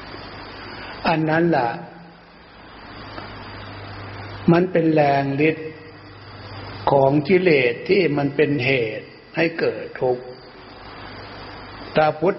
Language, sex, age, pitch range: Thai, male, 60-79, 105-150 Hz